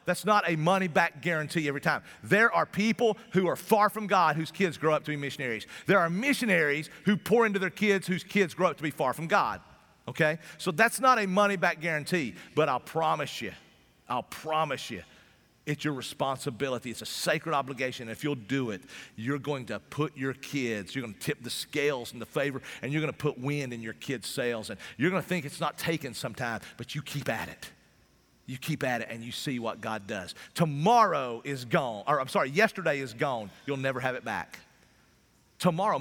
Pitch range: 125-170 Hz